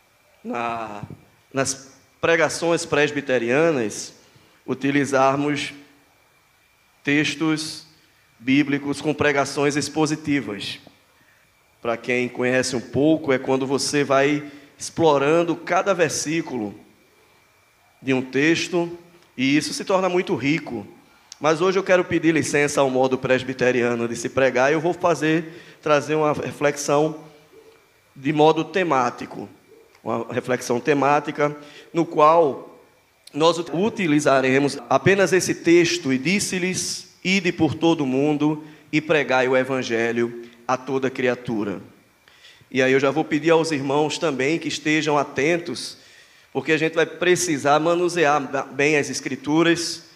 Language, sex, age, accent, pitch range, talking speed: Portuguese, male, 20-39, Brazilian, 130-160 Hz, 115 wpm